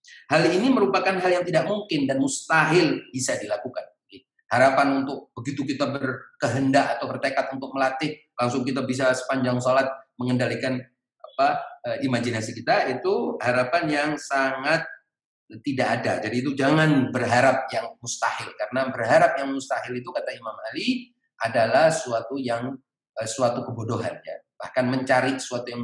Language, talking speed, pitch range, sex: Indonesian, 135 wpm, 125-160 Hz, male